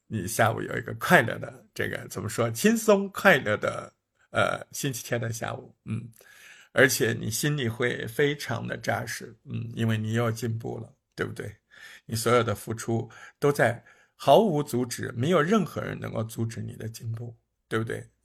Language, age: Chinese, 50-69